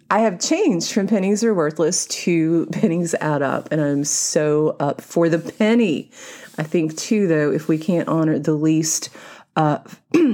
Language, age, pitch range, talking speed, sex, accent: English, 30-49, 150-205 Hz, 170 wpm, female, American